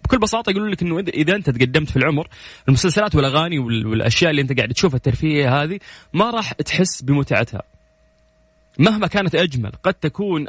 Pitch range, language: 115-155 Hz, English